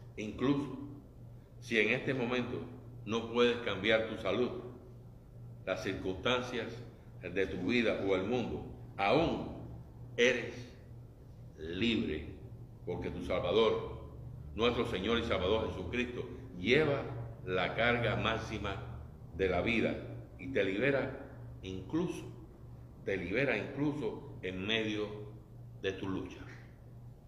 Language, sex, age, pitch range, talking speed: Spanish, male, 60-79, 110-125 Hz, 105 wpm